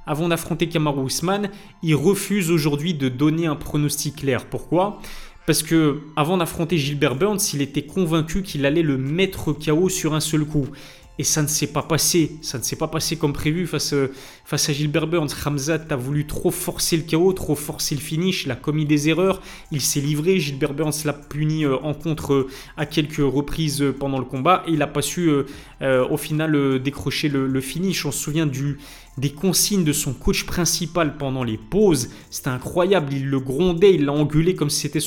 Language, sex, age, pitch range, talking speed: French, male, 20-39, 140-170 Hz, 190 wpm